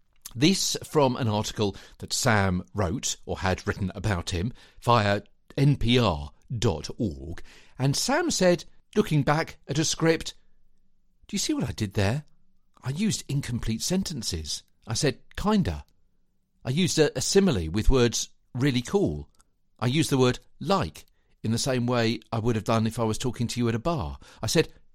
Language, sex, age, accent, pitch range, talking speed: English, male, 50-69, British, 95-135 Hz, 165 wpm